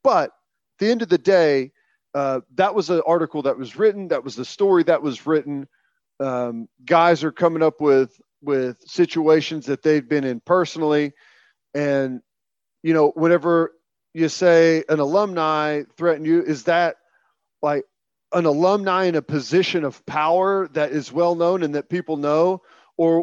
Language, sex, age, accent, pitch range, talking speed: English, male, 40-59, American, 140-175 Hz, 165 wpm